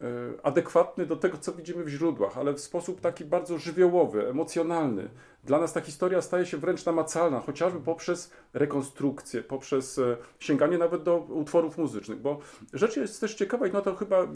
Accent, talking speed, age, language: native, 165 wpm, 40-59, Polish